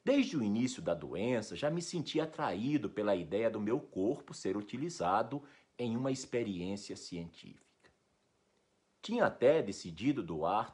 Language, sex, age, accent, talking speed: Portuguese, male, 60-79, Brazilian, 135 wpm